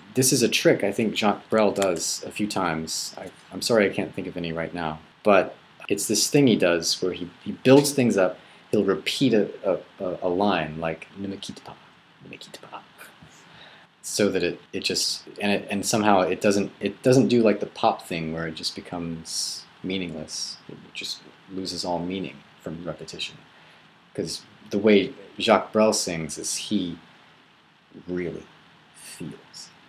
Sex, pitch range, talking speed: male, 80-95 Hz, 165 wpm